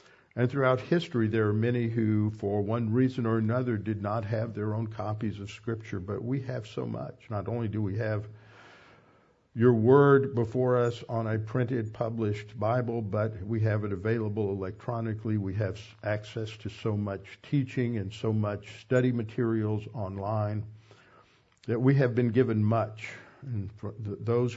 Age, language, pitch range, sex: 50-69, English, 105-120 Hz, male